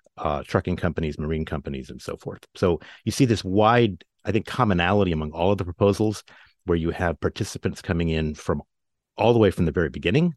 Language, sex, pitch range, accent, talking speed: English, male, 75-95 Hz, American, 205 wpm